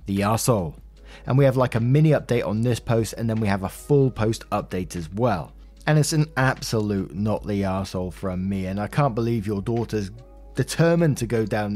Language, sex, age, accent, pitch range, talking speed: English, male, 20-39, British, 105-140 Hz, 200 wpm